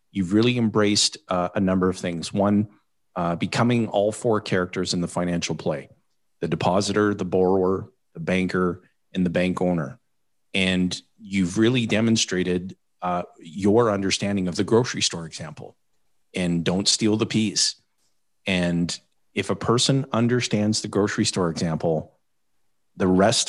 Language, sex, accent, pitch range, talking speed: English, male, American, 90-110 Hz, 145 wpm